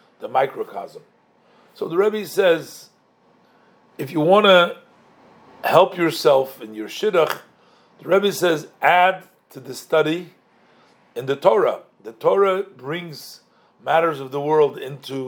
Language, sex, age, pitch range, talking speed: English, male, 50-69, 145-195 Hz, 130 wpm